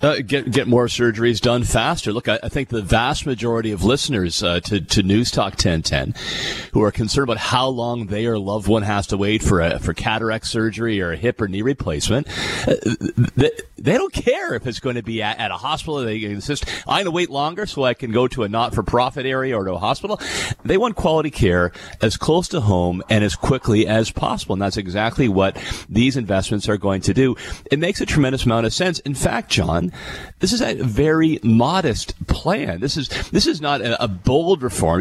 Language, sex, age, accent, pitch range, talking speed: English, male, 40-59, American, 105-135 Hz, 215 wpm